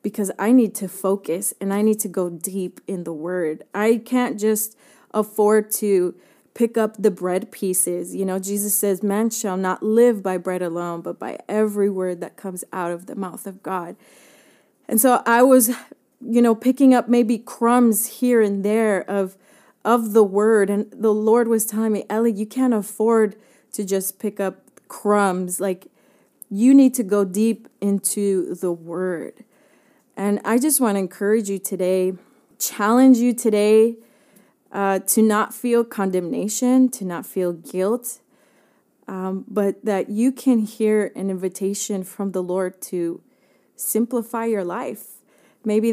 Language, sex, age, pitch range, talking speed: Spanish, female, 20-39, 185-225 Hz, 160 wpm